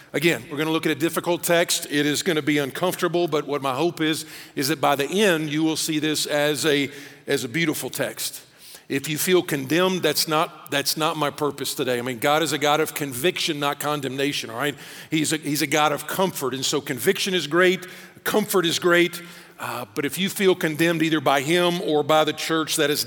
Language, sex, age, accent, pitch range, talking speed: English, male, 50-69, American, 140-170 Hz, 225 wpm